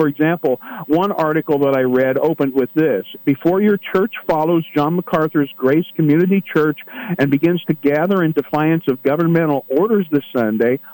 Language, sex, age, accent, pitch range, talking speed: English, male, 50-69, American, 135-170 Hz, 165 wpm